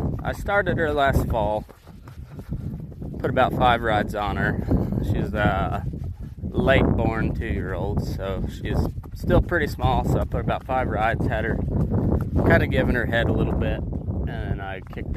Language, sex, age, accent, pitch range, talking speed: English, male, 20-39, American, 95-120 Hz, 160 wpm